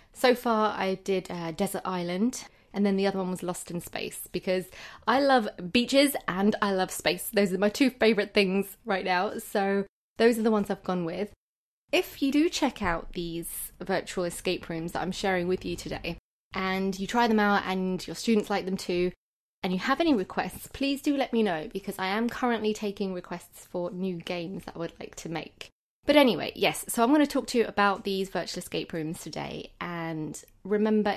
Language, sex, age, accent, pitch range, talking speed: English, female, 20-39, British, 180-215 Hz, 210 wpm